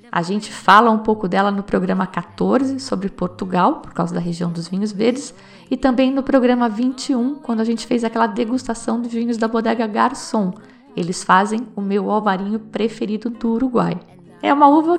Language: Portuguese